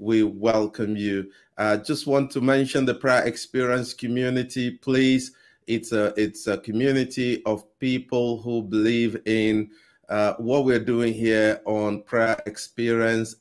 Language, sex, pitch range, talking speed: English, male, 100-120 Hz, 145 wpm